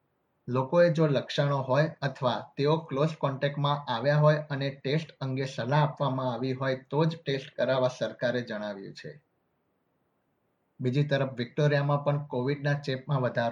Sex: male